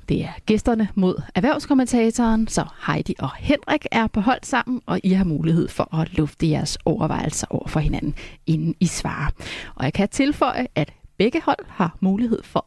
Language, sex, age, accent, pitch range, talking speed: Danish, female, 30-49, native, 175-245 Hz, 180 wpm